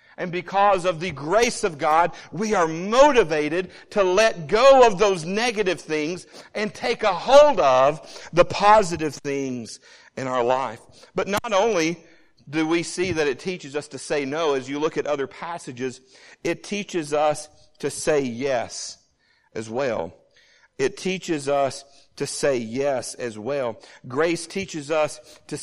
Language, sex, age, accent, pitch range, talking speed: English, male, 50-69, American, 140-180 Hz, 155 wpm